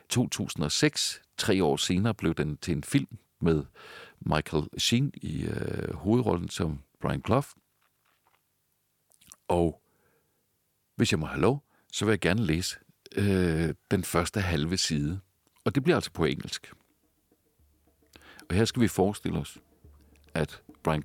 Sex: male